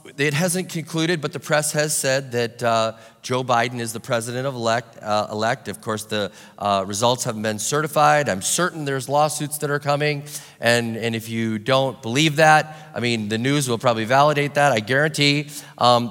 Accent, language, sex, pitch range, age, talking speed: American, English, male, 120-150 Hz, 30-49, 195 wpm